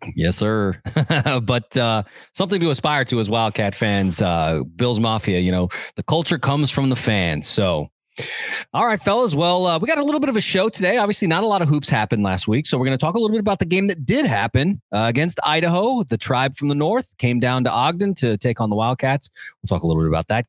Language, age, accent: English, 30-49, American